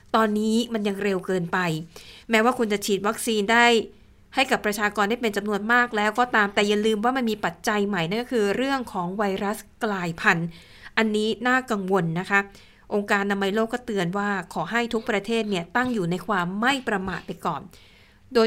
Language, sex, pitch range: Thai, female, 195-235 Hz